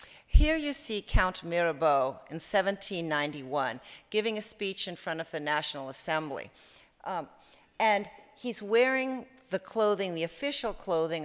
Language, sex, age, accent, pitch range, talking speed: English, female, 60-79, American, 155-210 Hz, 135 wpm